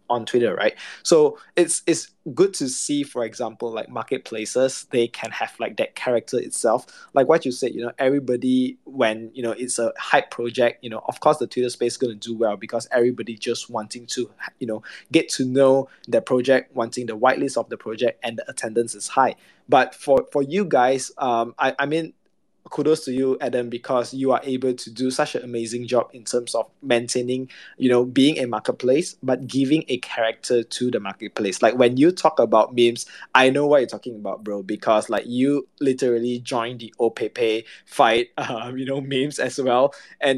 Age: 20-39